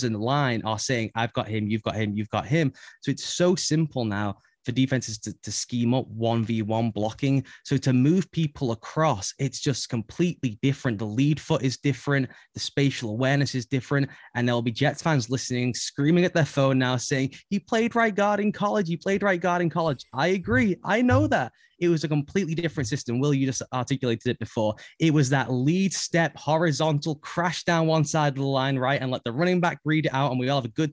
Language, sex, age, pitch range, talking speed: English, male, 20-39, 120-155 Hz, 225 wpm